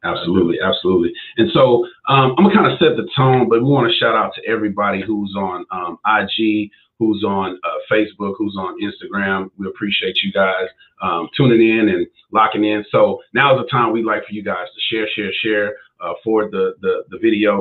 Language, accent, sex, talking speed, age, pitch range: English, American, male, 210 wpm, 30-49, 105-135 Hz